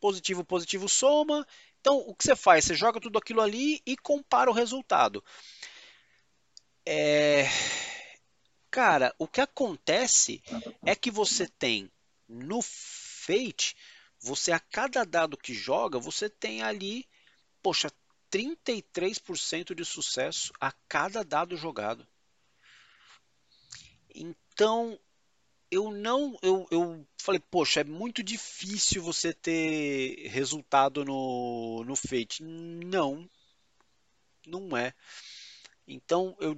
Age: 40-59